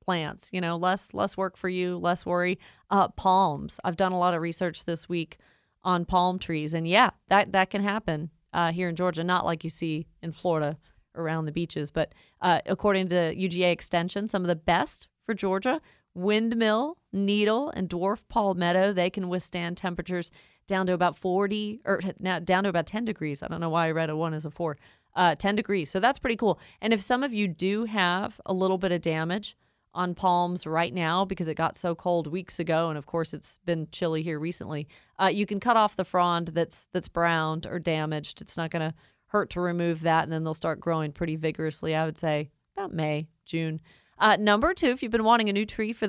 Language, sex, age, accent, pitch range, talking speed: English, female, 30-49, American, 165-195 Hz, 215 wpm